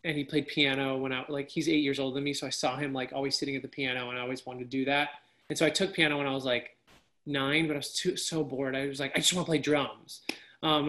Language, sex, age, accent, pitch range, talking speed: English, male, 20-39, American, 135-160 Hz, 310 wpm